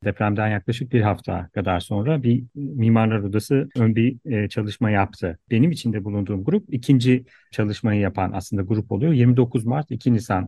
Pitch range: 100-125 Hz